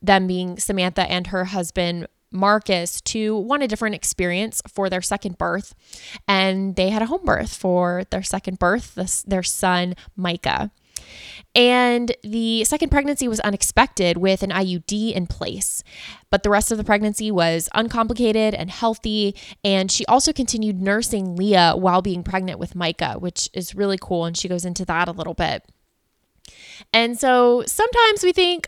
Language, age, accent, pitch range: English, 20-39, American, 185-245 Hz